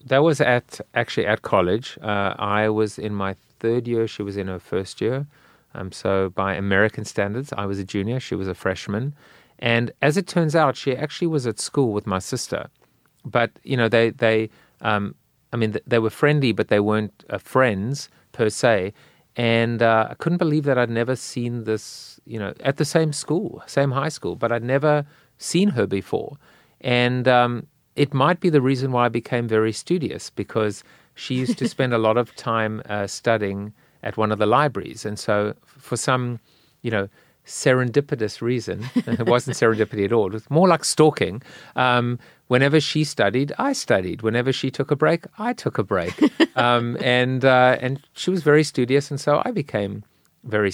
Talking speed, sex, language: 190 wpm, male, English